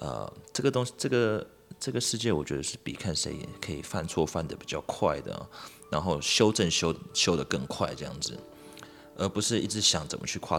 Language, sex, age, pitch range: Chinese, male, 20-39, 85-110 Hz